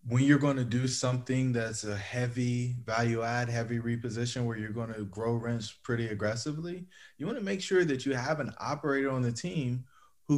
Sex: male